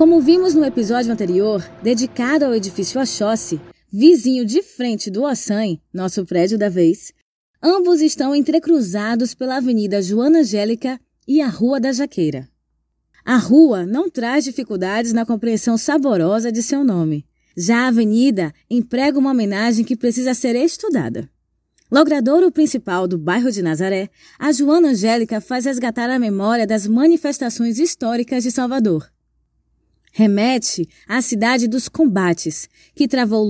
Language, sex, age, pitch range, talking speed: Portuguese, female, 20-39, 205-275 Hz, 135 wpm